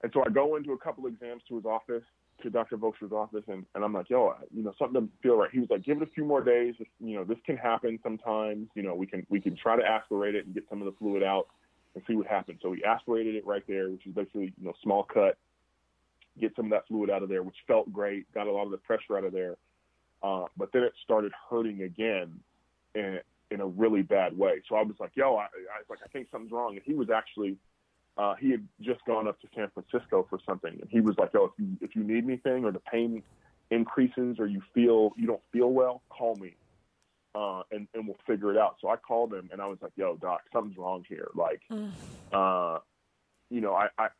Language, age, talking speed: English, 20-39, 255 wpm